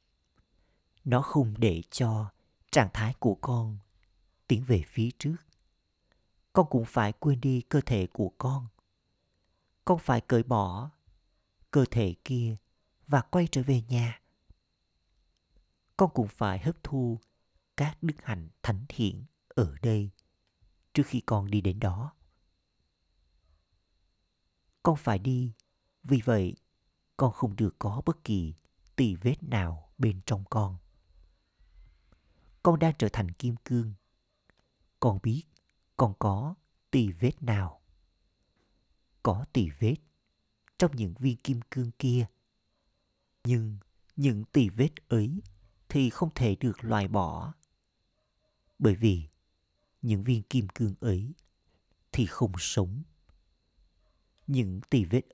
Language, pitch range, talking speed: Vietnamese, 90-125 Hz, 125 wpm